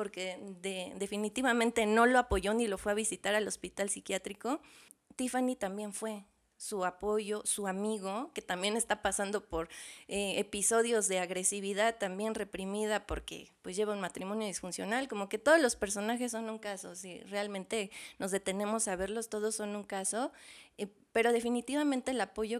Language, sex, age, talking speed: Spanish, female, 20-39, 160 wpm